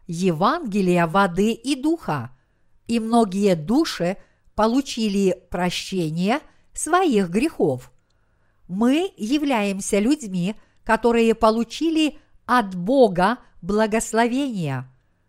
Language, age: Russian, 50-69